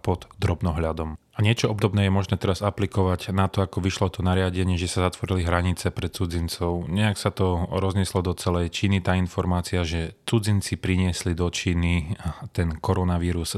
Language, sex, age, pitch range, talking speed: Slovak, male, 30-49, 90-100 Hz, 165 wpm